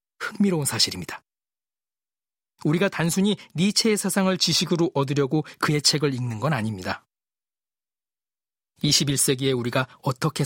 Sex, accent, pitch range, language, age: male, native, 130-180 Hz, Korean, 40-59